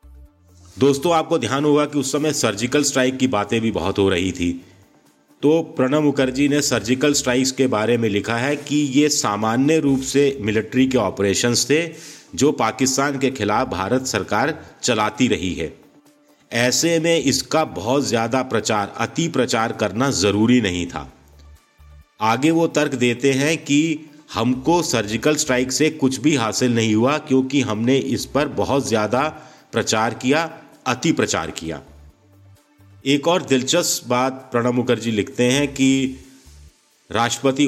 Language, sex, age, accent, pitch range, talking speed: Hindi, male, 50-69, native, 110-140 Hz, 150 wpm